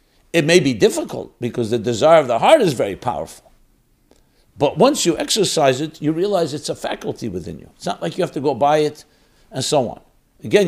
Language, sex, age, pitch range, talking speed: English, male, 60-79, 115-150 Hz, 215 wpm